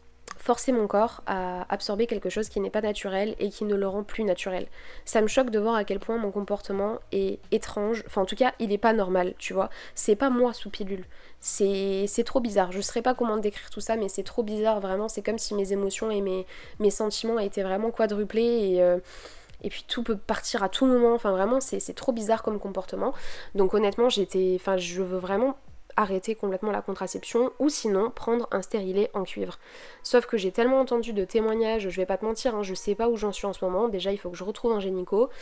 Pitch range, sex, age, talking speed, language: 195-225 Hz, female, 20-39, 235 wpm, French